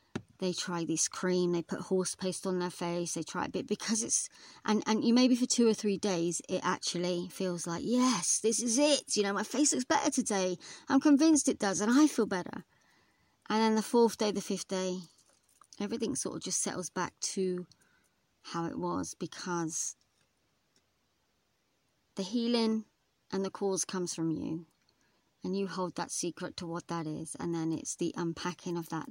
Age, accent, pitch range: 30-49, British, 170-210 Hz